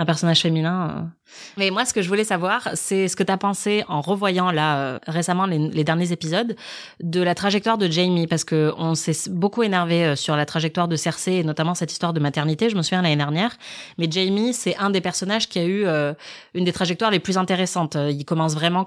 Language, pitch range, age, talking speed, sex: French, 160-195 Hz, 20-39, 225 wpm, female